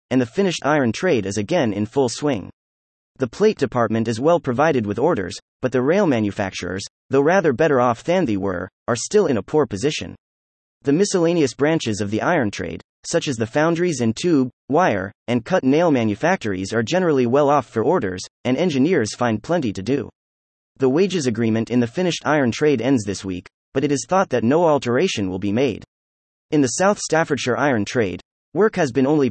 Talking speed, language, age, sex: 195 wpm, English, 30-49, male